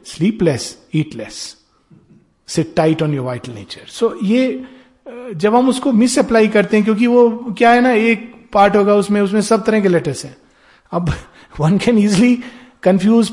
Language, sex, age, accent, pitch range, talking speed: Hindi, male, 50-69, native, 155-215 Hz, 165 wpm